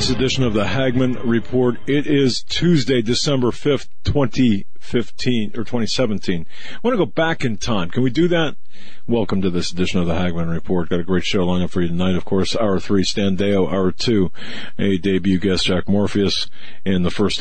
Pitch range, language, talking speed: 85-110 Hz, English, 205 wpm